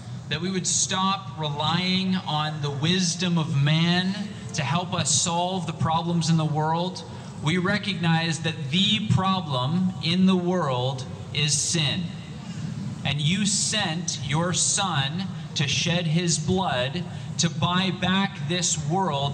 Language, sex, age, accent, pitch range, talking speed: English, male, 30-49, American, 150-180 Hz, 135 wpm